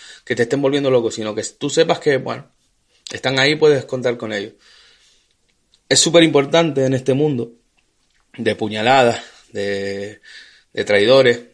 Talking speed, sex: 150 wpm, male